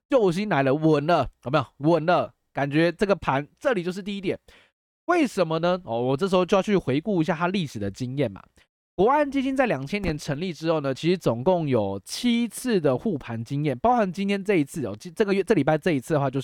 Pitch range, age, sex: 135-205 Hz, 20-39, male